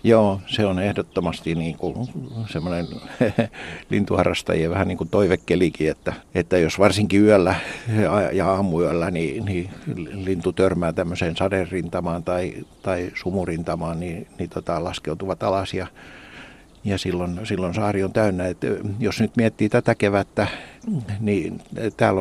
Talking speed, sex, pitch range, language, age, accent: 115 wpm, male, 95-115 Hz, Finnish, 60-79, native